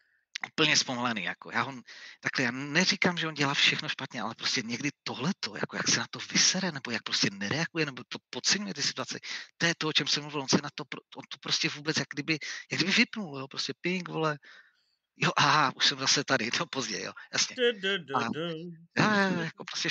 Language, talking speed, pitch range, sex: Czech, 210 wpm, 115-160 Hz, male